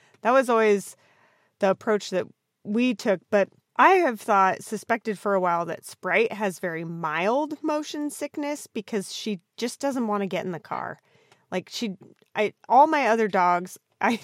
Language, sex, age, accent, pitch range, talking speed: English, female, 30-49, American, 175-225 Hz, 175 wpm